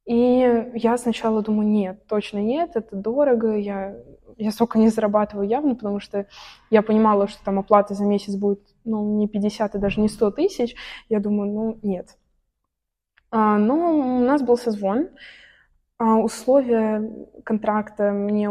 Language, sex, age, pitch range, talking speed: Russian, female, 20-39, 205-235 Hz, 145 wpm